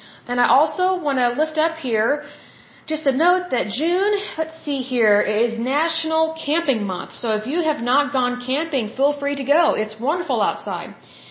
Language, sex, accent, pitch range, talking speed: Hindi, female, American, 235-285 Hz, 180 wpm